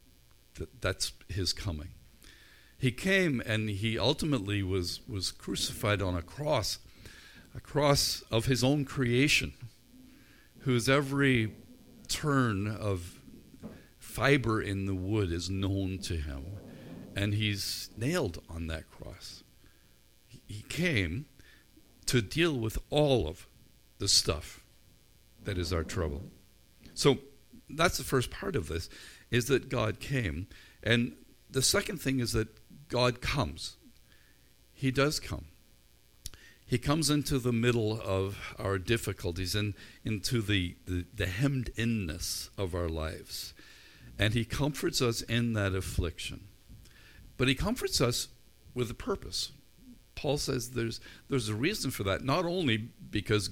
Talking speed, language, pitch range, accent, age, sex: 130 wpm, English, 95-130 Hz, American, 50-69, male